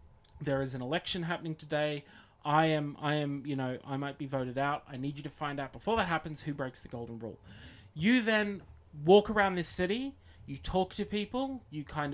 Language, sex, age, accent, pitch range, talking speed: English, male, 20-39, Australian, 135-170 Hz, 215 wpm